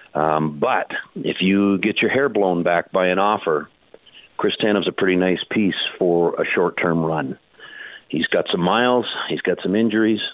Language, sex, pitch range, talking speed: English, male, 90-110 Hz, 175 wpm